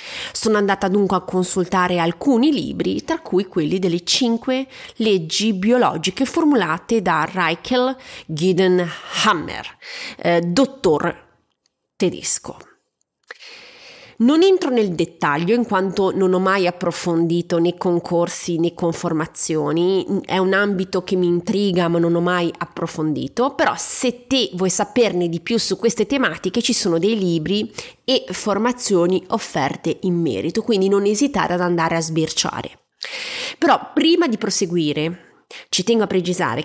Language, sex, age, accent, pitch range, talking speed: Italian, female, 30-49, native, 170-225 Hz, 135 wpm